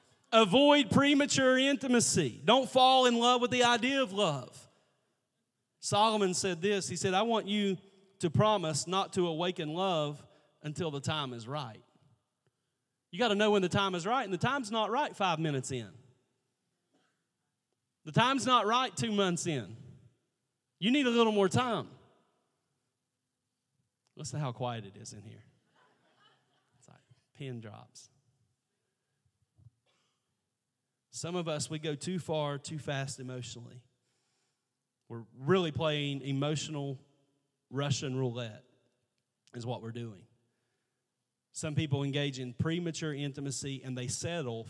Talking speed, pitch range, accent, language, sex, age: 135 wpm, 125-175 Hz, American, English, male, 40-59